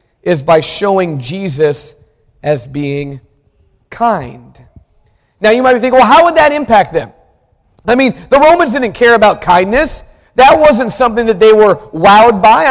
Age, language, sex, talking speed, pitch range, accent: 40-59, English, male, 160 wpm, 185-260 Hz, American